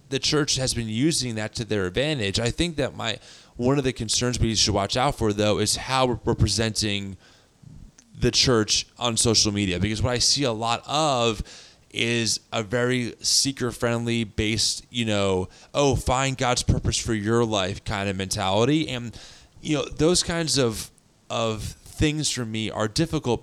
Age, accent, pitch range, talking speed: 20-39, American, 105-125 Hz, 175 wpm